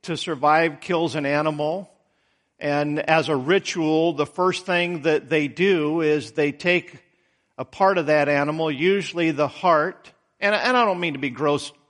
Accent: American